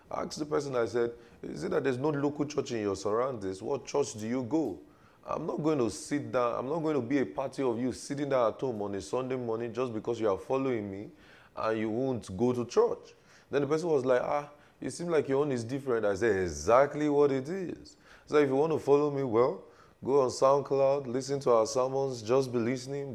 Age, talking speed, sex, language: 30-49, 240 wpm, male, English